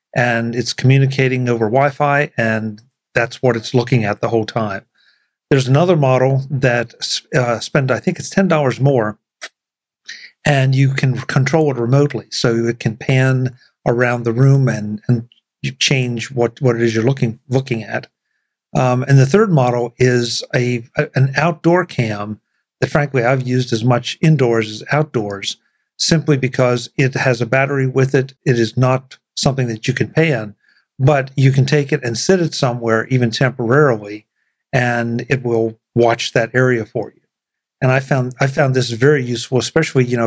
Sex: male